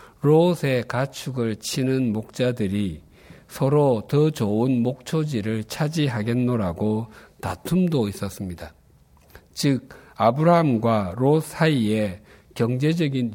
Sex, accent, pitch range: male, native, 105-150 Hz